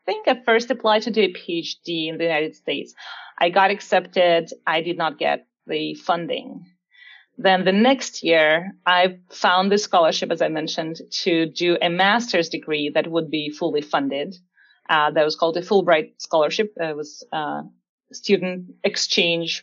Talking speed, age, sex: 170 wpm, 30-49, female